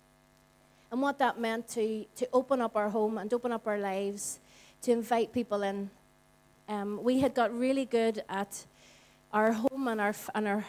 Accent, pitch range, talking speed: Irish, 210-255 Hz, 180 wpm